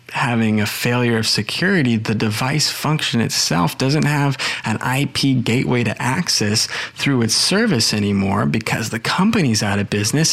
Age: 20-39